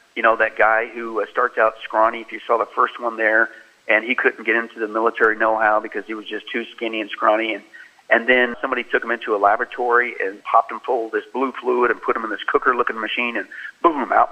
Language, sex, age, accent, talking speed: English, male, 40-59, American, 245 wpm